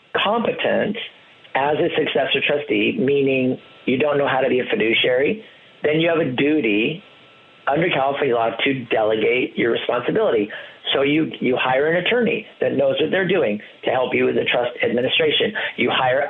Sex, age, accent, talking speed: male, 50-69, American, 170 wpm